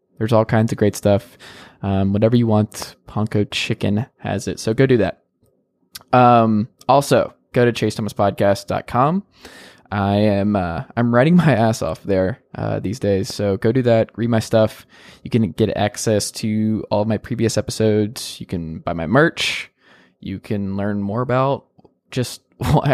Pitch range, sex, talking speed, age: 100-120 Hz, male, 170 wpm, 20-39